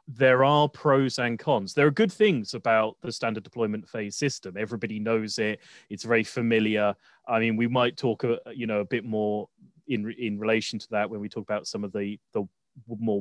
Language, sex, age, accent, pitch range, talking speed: English, male, 30-49, British, 110-130 Hz, 210 wpm